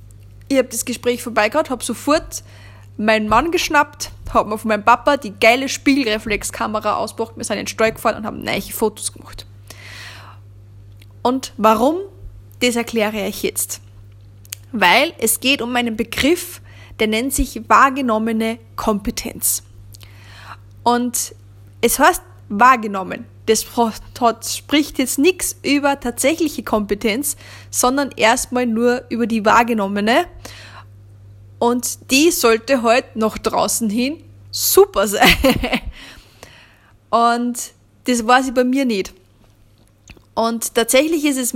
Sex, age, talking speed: female, 20-39, 125 wpm